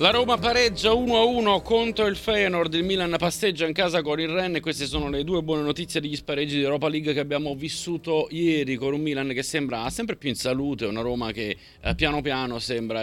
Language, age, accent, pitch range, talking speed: Italian, 30-49, native, 105-145 Hz, 210 wpm